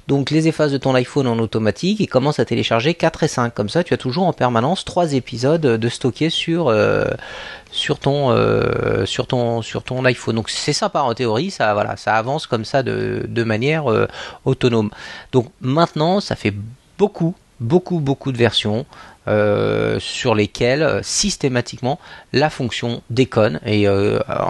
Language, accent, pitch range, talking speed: French, French, 115-150 Hz, 155 wpm